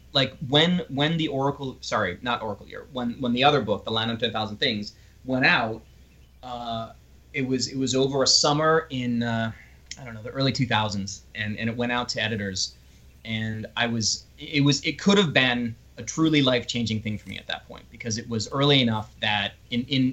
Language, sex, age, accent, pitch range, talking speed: English, male, 30-49, American, 105-125 Hz, 220 wpm